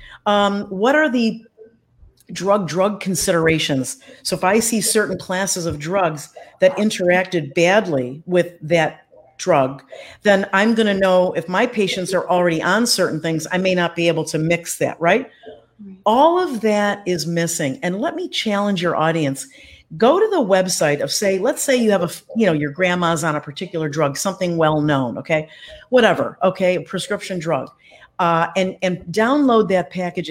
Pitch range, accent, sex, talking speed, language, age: 165-220 Hz, American, female, 170 wpm, English, 50-69